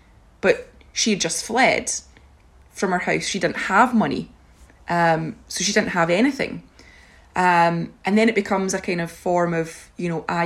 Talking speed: 170 wpm